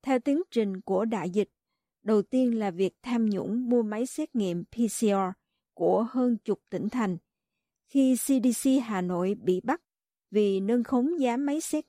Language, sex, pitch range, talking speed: Vietnamese, female, 195-260 Hz, 170 wpm